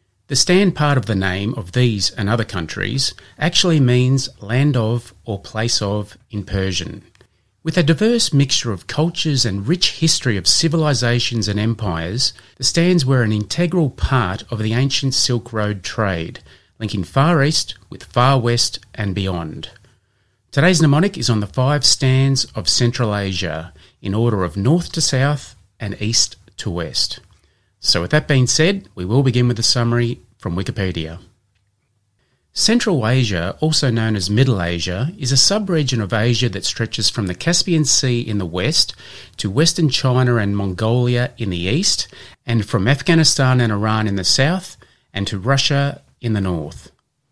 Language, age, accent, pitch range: English, 30-49, Australian, 100-135 Hz